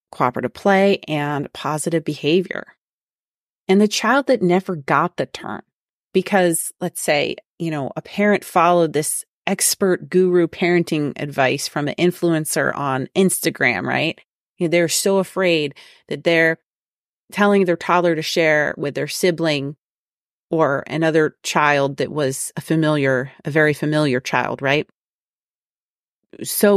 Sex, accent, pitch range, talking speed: female, American, 155-195 Hz, 135 wpm